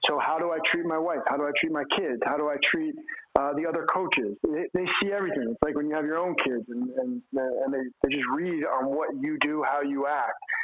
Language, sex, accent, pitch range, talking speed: English, male, American, 140-180 Hz, 265 wpm